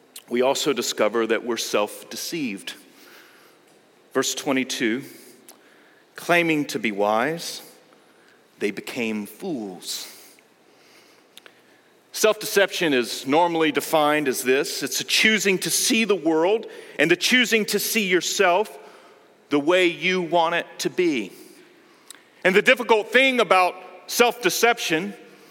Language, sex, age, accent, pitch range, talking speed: English, male, 40-59, American, 165-270 Hz, 110 wpm